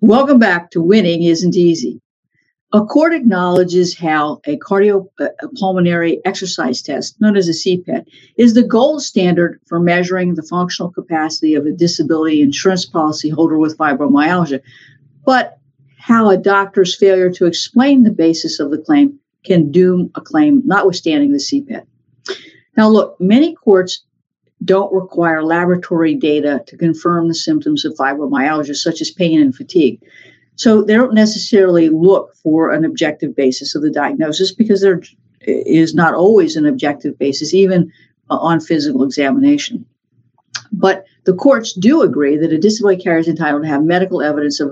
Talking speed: 155 wpm